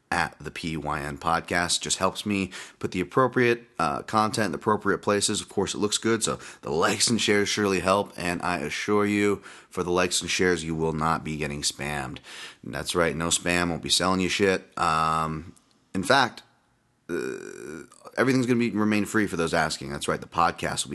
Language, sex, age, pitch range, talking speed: English, male, 30-49, 80-105 Hz, 200 wpm